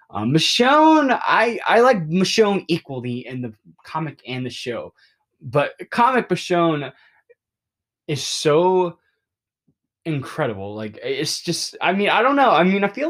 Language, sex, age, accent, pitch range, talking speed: English, male, 20-39, American, 115-180 Hz, 140 wpm